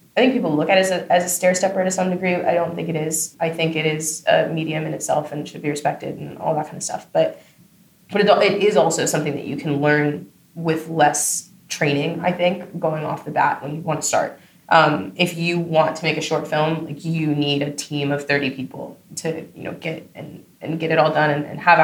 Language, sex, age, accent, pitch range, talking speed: English, female, 20-39, American, 155-185 Hz, 255 wpm